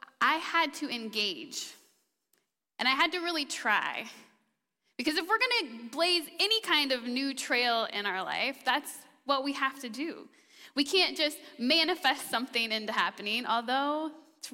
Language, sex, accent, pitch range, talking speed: English, female, American, 220-290 Hz, 160 wpm